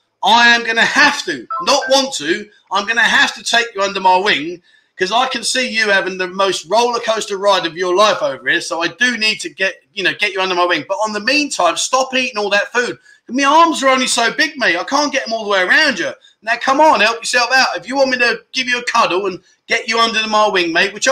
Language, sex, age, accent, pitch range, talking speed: English, male, 30-49, British, 200-275 Hz, 275 wpm